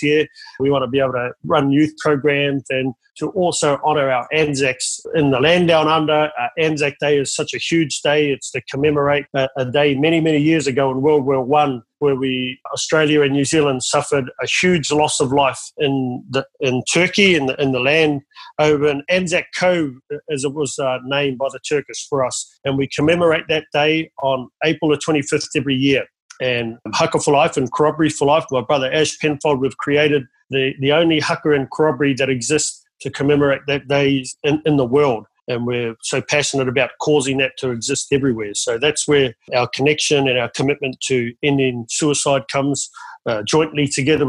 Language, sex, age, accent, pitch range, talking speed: English, male, 30-49, Australian, 135-150 Hz, 195 wpm